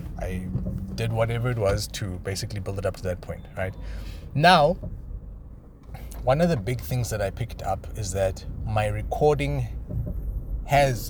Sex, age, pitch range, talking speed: male, 30-49, 75-105 Hz, 155 wpm